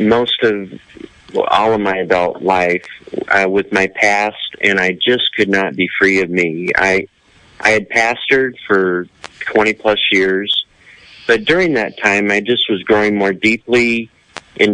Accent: American